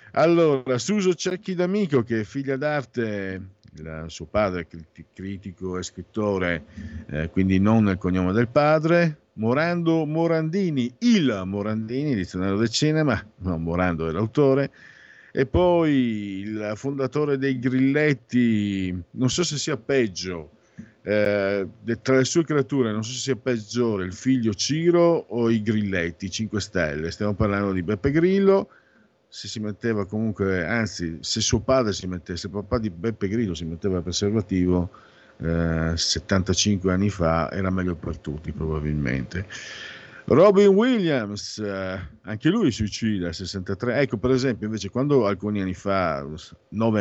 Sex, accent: male, native